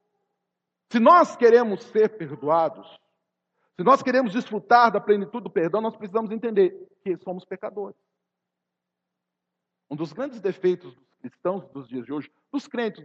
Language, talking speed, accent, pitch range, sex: Portuguese, 145 wpm, Brazilian, 165-240 Hz, male